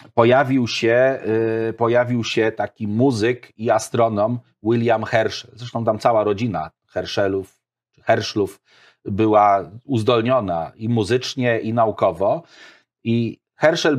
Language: Polish